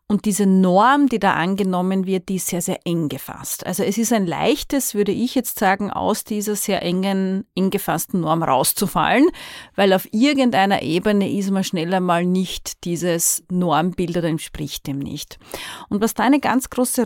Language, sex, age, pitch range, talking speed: German, female, 30-49, 180-235 Hz, 180 wpm